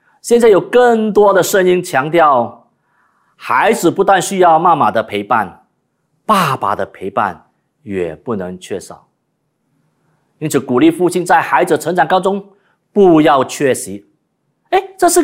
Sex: male